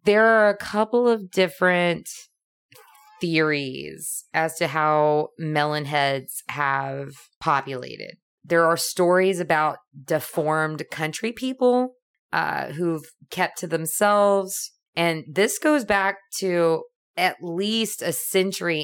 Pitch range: 155-190 Hz